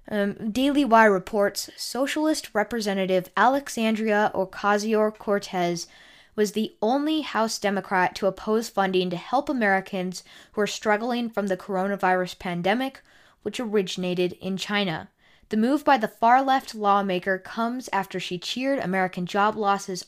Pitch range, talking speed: 185-230 Hz, 135 wpm